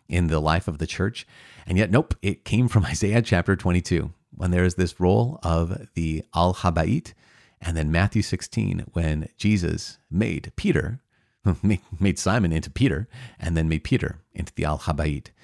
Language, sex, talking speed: English, male, 165 wpm